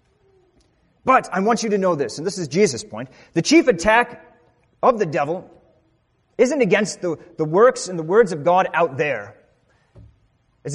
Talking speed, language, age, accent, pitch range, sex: 175 wpm, English, 30-49, American, 155-245 Hz, male